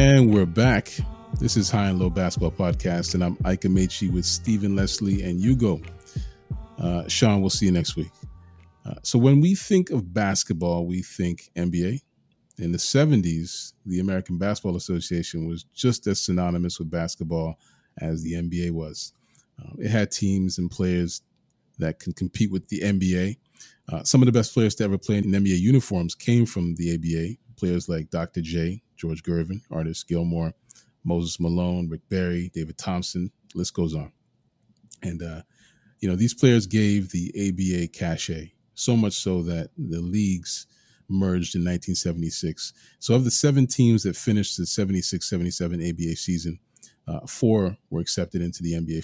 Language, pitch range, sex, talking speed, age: English, 85-105 Hz, male, 165 wpm, 30-49